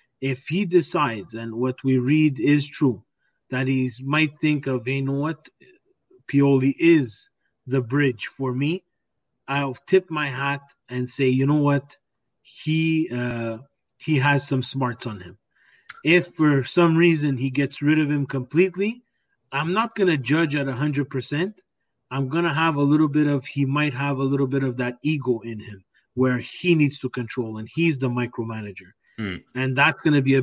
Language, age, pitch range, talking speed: Italian, 30-49, 125-150 Hz, 180 wpm